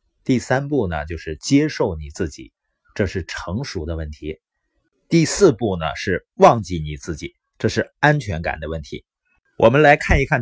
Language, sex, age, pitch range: Chinese, male, 30-49, 85-140 Hz